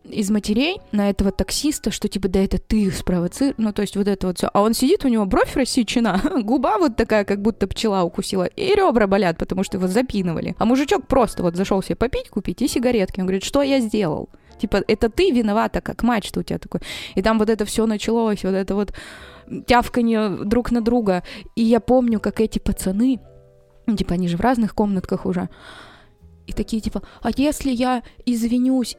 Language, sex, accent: Russian, female, native